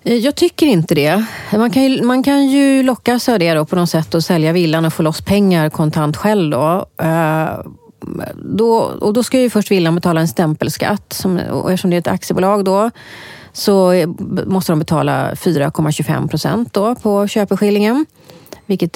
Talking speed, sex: 165 wpm, female